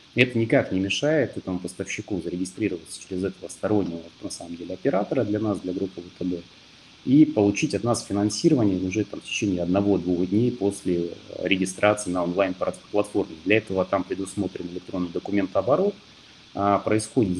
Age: 30-49